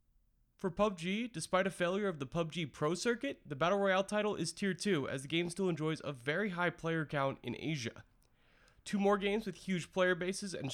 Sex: male